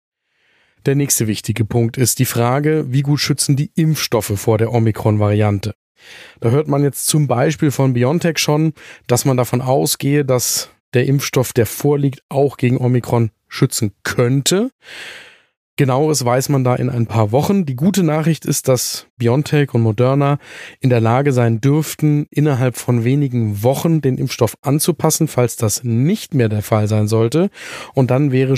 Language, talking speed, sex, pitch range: German, 160 wpm, male, 115-145 Hz